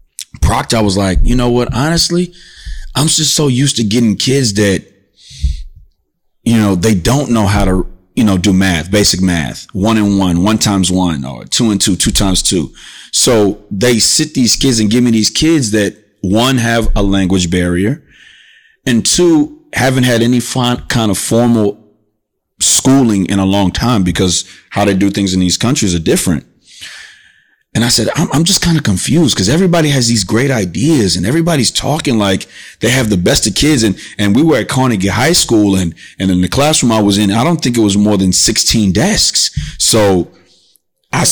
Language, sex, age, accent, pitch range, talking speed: English, male, 30-49, American, 100-130 Hz, 195 wpm